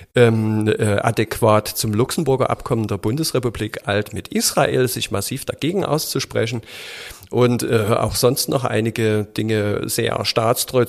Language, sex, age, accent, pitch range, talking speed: German, male, 40-59, German, 105-125 Hz, 130 wpm